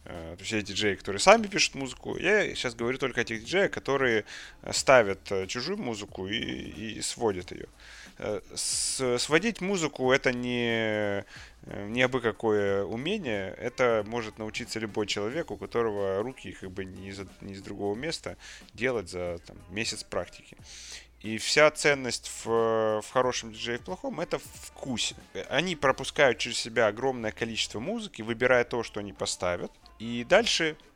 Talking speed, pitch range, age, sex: 145 wpm, 105-140 Hz, 30-49, male